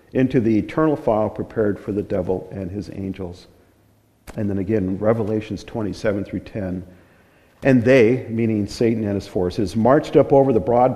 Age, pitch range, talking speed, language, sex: 50-69, 95-120 Hz, 165 wpm, English, male